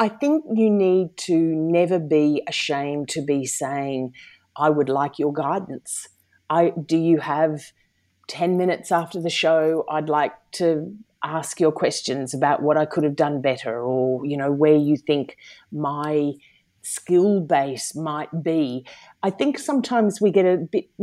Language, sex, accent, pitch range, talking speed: English, female, Australian, 150-195 Hz, 160 wpm